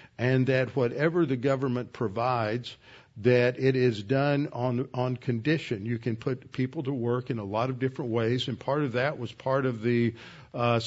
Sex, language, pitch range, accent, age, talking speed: male, English, 115-130 Hz, American, 50-69, 190 wpm